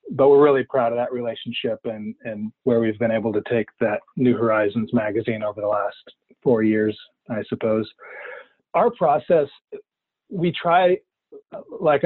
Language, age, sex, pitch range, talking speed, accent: English, 40-59, male, 120-135 Hz, 155 wpm, American